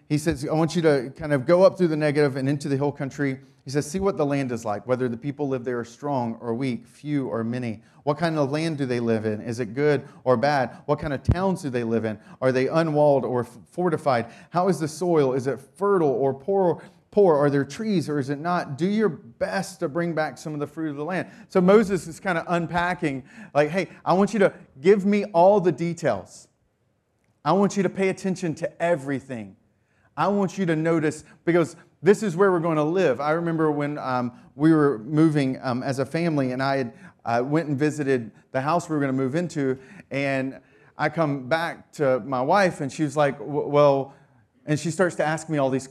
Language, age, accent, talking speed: English, 30-49, American, 230 wpm